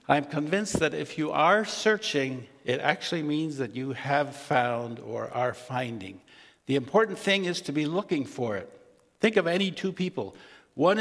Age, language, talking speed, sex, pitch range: 60-79, English, 175 wpm, male, 135-190 Hz